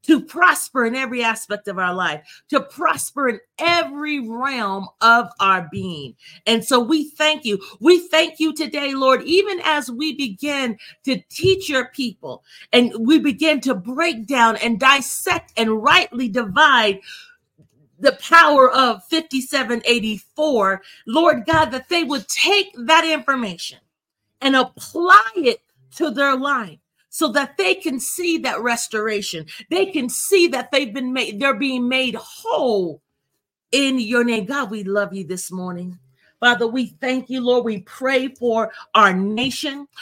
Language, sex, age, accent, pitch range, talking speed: English, female, 40-59, American, 225-290 Hz, 150 wpm